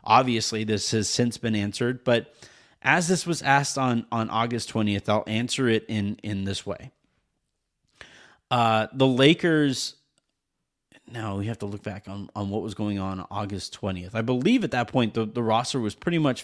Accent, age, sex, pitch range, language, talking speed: American, 30-49, male, 100-120 Hz, English, 185 wpm